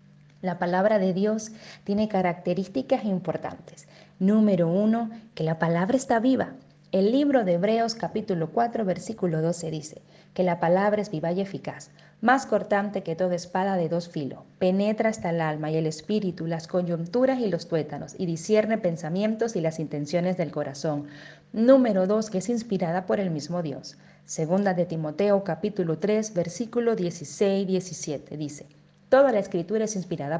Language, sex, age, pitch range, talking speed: Spanish, female, 30-49, 165-220 Hz, 160 wpm